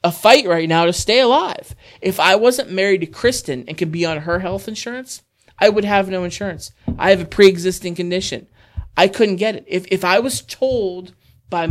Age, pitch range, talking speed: 30-49, 160-215 Hz, 205 wpm